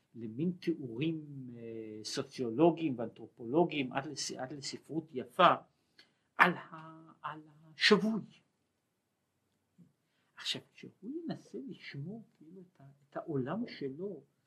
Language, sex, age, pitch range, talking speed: Hebrew, male, 60-79, 130-175 Hz, 65 wpm